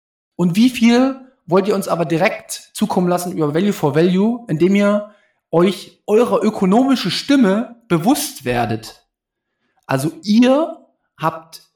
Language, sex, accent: German, male, German